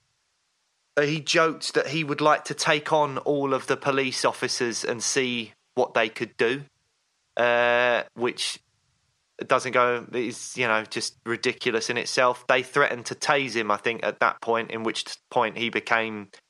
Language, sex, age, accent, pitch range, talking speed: English, male, 20-39, British, 115-130 Hz, 165 wpm